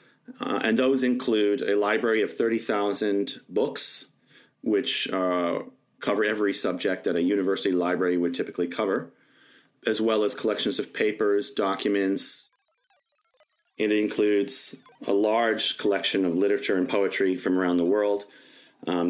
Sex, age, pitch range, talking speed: male, 30-49, 95-110 Hz, 130 wpm